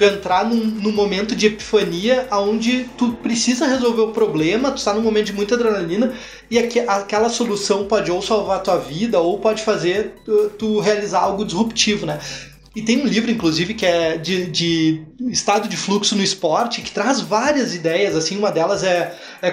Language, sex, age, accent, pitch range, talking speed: Portuguese, male, 20-39, Brazilian, 190-235 Hz, 190 wpm